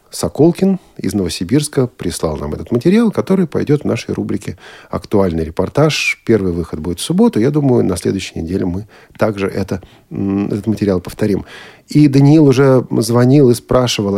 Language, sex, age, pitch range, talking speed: Russian, male, 40-59, 95-125 Hz, 150 wpm